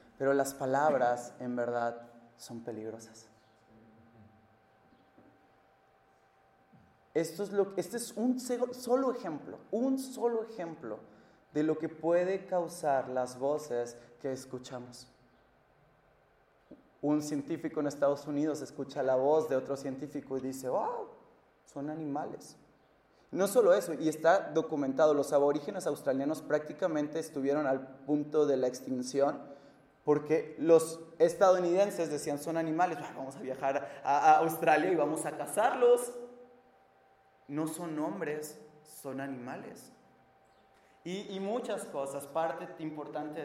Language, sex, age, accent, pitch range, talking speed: Spanish, male, 30-49, Mexican, 130-160 Hz, 115 wpm